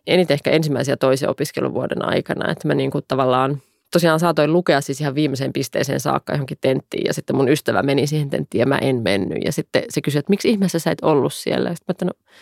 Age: 20-39